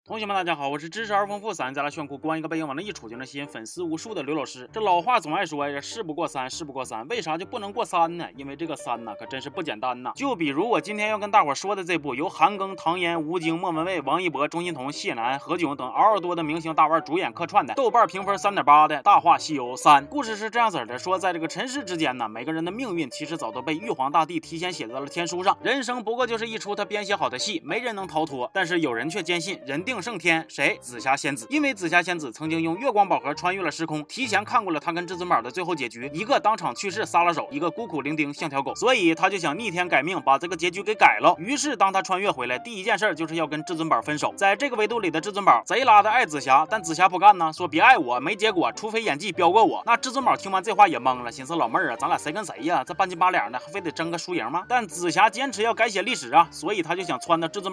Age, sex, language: 20-39, male, Chinese